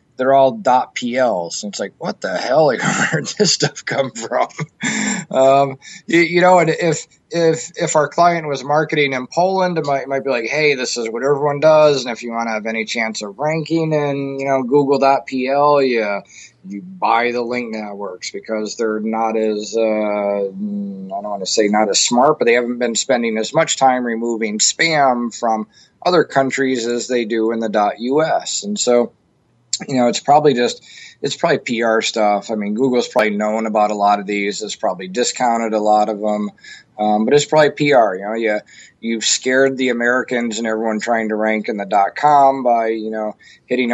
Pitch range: 110-135 Hz